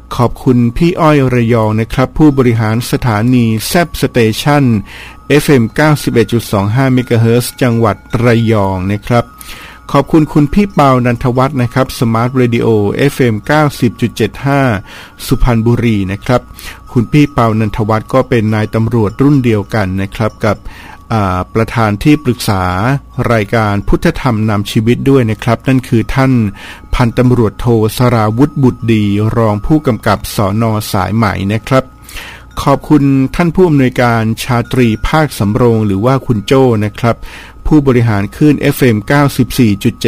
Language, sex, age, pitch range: Thai, male, 60-79, 110-130 Hz